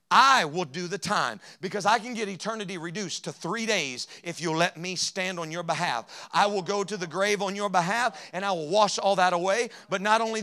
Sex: male